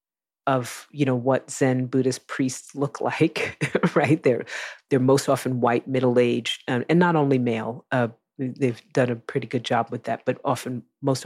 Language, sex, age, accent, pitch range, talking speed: English, female, 40-59, American, 125-140 Hz, 180 wpm